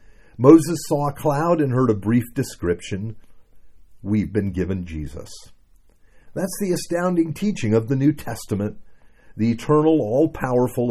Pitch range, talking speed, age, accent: 95-140 Hz, 130 wpm, 50-69, American